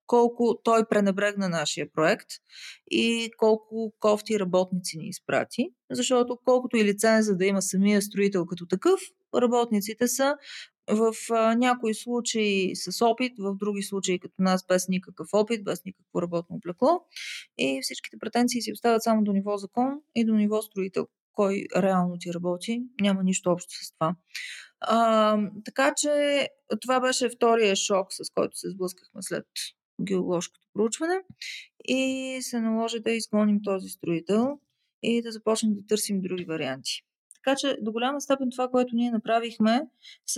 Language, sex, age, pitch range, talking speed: Bulgarian, female, 30-49, 190-240 Hz, 150 wpm